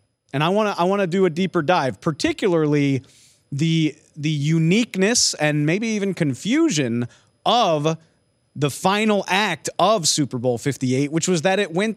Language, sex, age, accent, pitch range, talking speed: English, male, 30-49, American, 125-170 Hz, 150 wpm